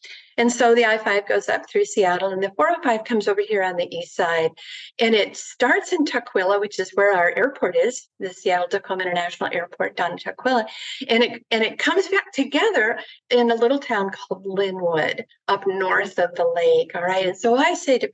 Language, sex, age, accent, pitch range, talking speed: English, female, 50-69, American, 195-250 Hz, 205 wpm